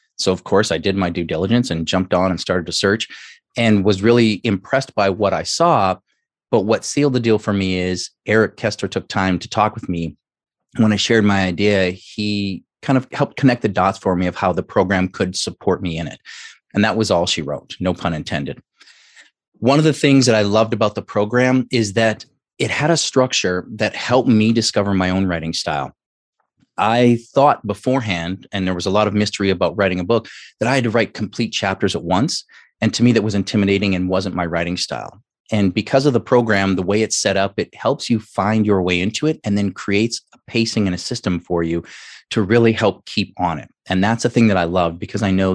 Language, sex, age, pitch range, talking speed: English, male, 30-49, 95-115 Hz, 230 wpm